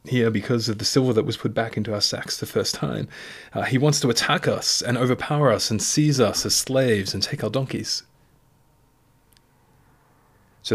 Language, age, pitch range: English, 30-49, 110-135 Hz